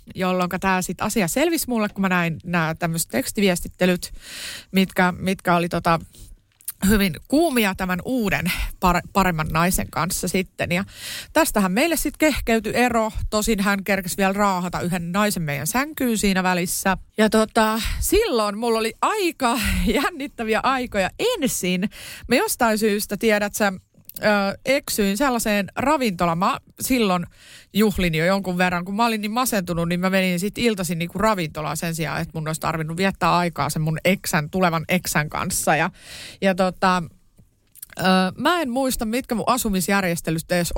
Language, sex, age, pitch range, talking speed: Finnish, female, 30-49, 175-225 Hz, 150 wpm